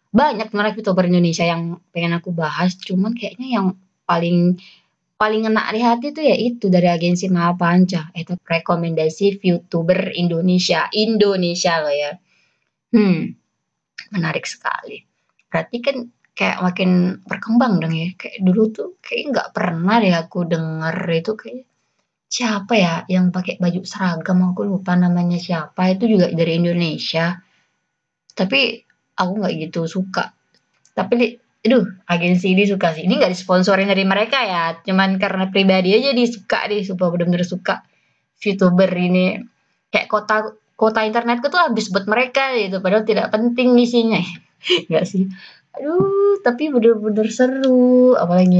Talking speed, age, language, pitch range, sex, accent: 145 wpm, 20-39, Indonesian, 175-225 Hz, female, native